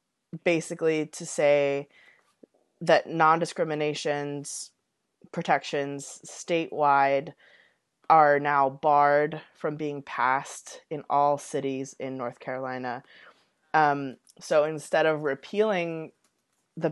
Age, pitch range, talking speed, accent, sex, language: 20-39, 140-165 Hz, 90 wpm, American, female, English